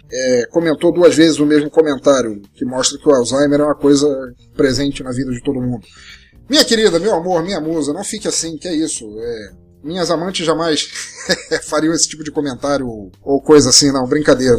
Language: Portuguese